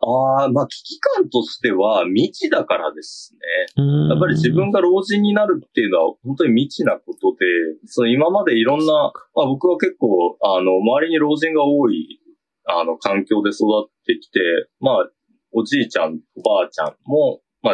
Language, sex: Japanese, male